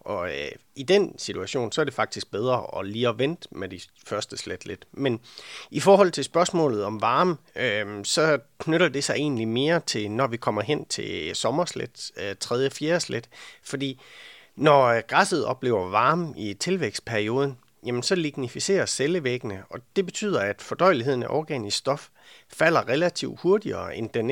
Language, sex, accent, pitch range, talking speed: Danish, male, native, 110-165 Hz, 165 wpm